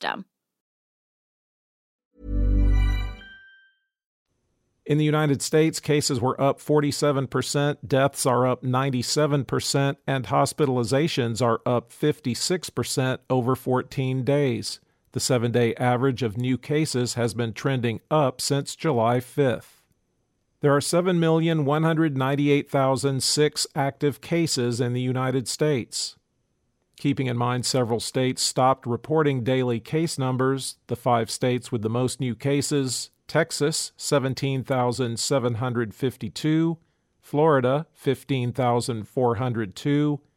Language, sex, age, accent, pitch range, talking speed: English, male, 50-69, American, 125-150 Hz, 100 wpm